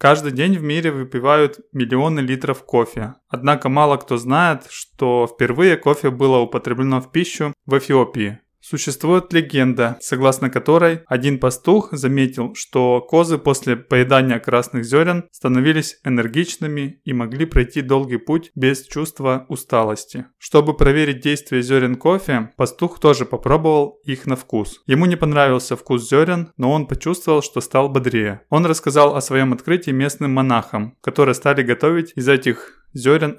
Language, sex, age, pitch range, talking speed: Russian, male, 20-39, 125-150 Hz, 140 wpm